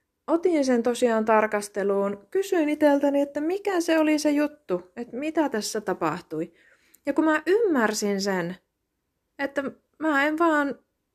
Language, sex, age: Finnish, female, 30-49